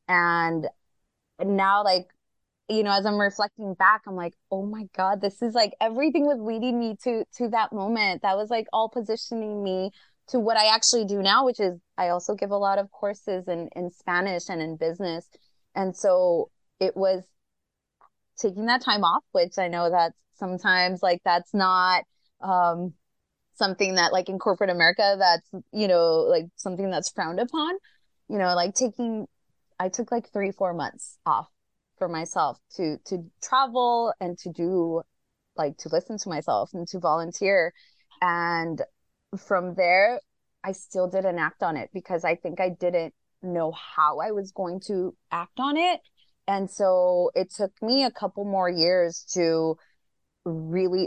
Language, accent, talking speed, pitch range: English, American, 170 wpm, 175-210 Hz